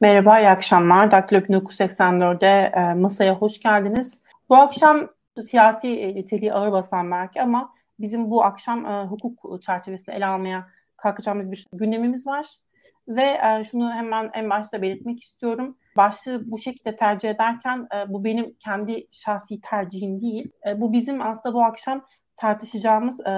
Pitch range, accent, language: 195-235 Hz, native, Turkish